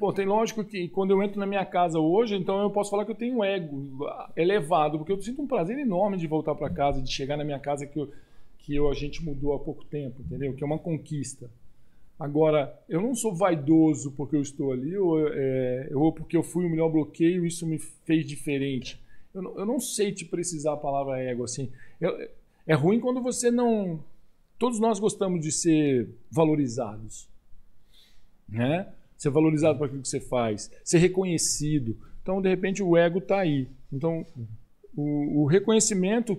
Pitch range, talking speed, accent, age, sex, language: 135-195 Hz, 185 wpm, Brazilian, 50-69, male, Portuguese